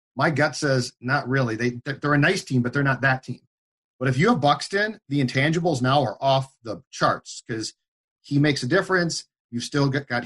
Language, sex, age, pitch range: English, male, 40-59, 130-160 Hz